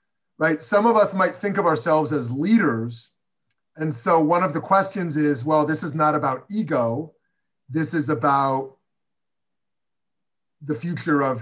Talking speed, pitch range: 145 wpm, 145-190 Hz